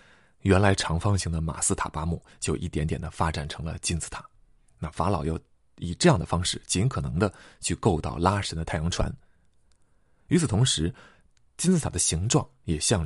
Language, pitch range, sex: Chinese, 80-105 Hz, male